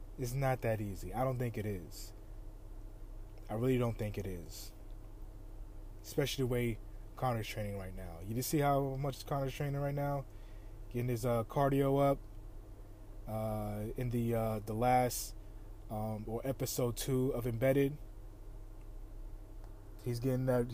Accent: American